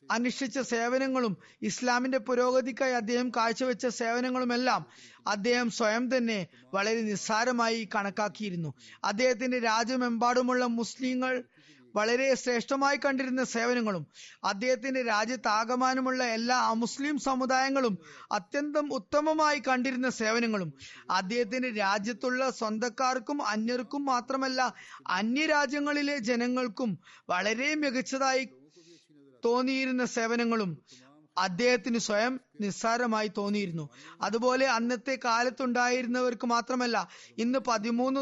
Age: 20-39